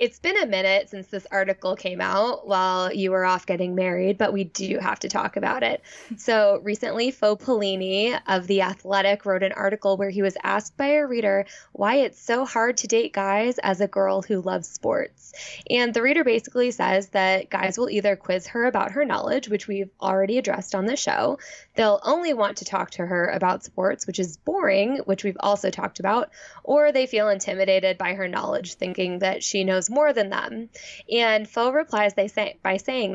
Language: English